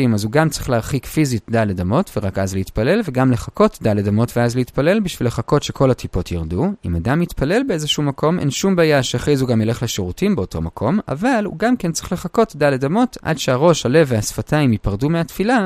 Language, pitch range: Hebrew, 105-155 Hz